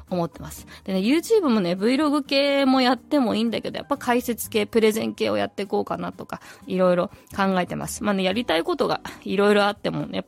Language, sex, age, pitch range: Japanese, female, 20-39, 175-230 Hz